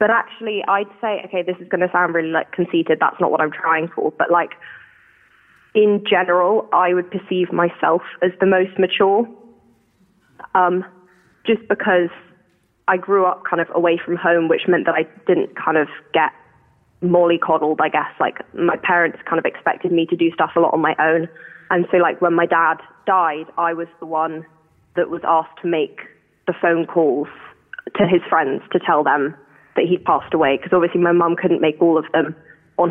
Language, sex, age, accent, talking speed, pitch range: English, female, 20-39, British, 195 wpm, 165-180 Hz